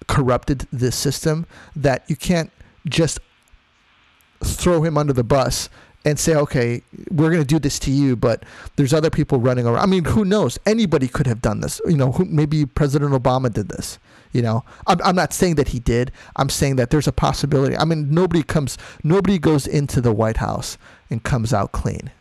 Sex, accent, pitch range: male, American, 125-155 Hz